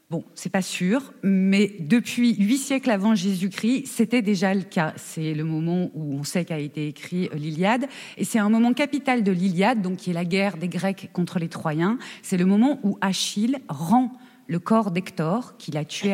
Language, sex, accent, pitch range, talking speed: French, female, French, 180-235 Hz, 200 wpm